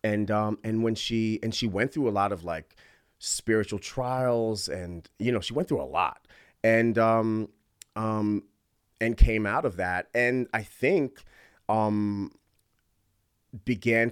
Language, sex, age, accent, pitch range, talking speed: English, male, 30-49, American, 95-110 Hz, 155 wpm